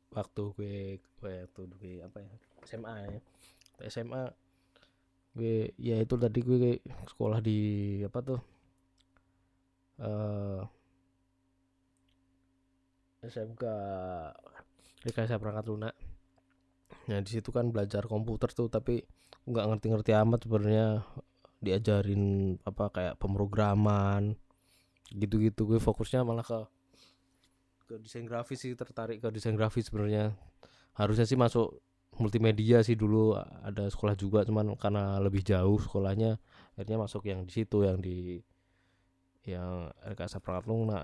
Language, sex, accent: Indonesian, male, native